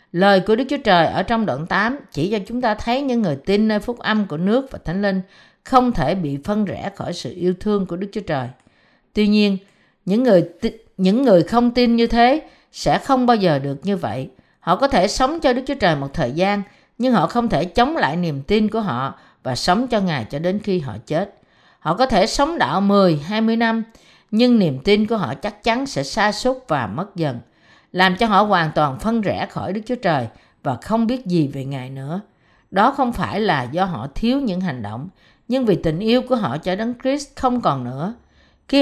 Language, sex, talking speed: Vietnamese, female, 225 wpm